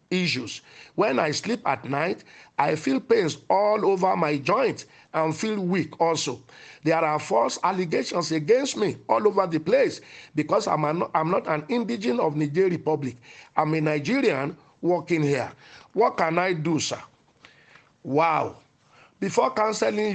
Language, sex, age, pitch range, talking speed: English, male, 50-69, 155-215 Hz, 150 wpm